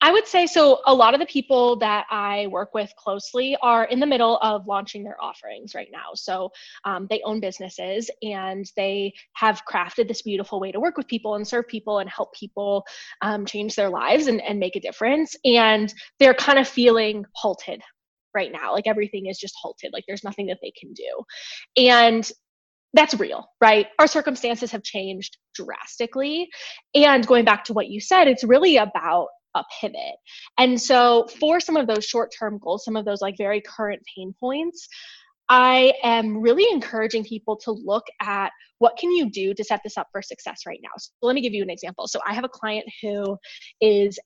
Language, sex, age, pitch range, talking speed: English, female, 20-39, 205-255 Hz, 200 wpm